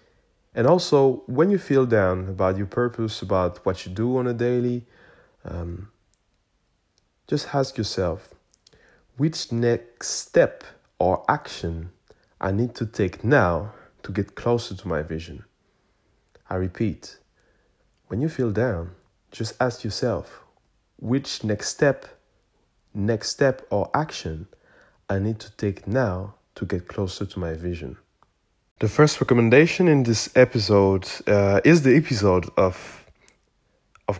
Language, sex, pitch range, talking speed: English, male, 95-120 Hz, 130 wpm